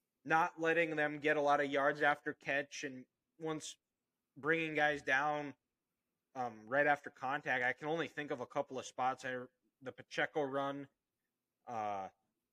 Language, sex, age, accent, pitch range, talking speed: English, male, 20-39, American, 135-160 Hz, 160 wpm